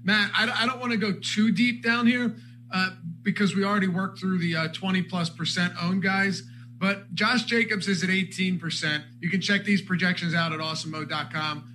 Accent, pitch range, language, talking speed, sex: American, 155-190 Hz, English, 185 wpm, male